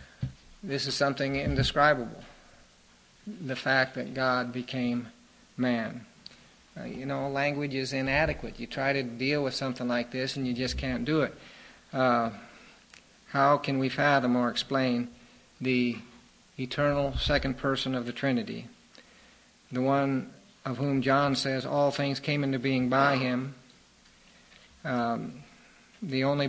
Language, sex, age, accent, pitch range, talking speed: English, male, 50-69, American, 125-140 Hz, 135 wpm